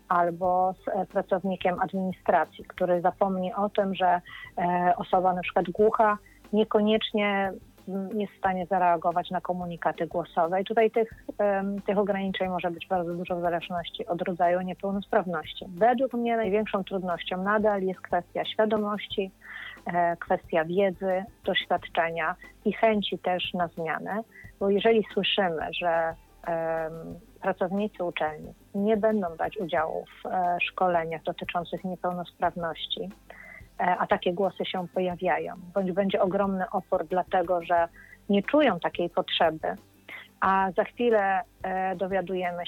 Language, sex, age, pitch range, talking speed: Polish, female, 30-49, 180-200 Hz, 115 wpm